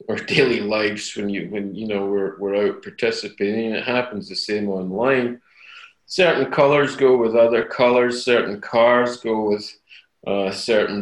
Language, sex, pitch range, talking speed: English, male, 100-115 Hz, 160 wpm